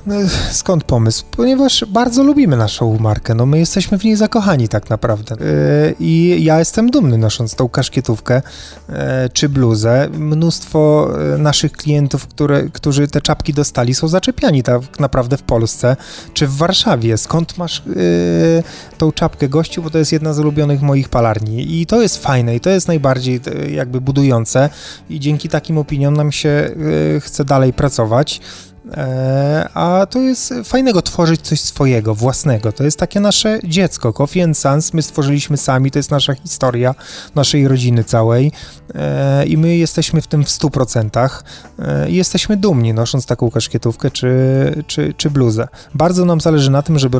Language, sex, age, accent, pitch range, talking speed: Polish, male, 20-39, native, 125-165 Hz, 165 wpm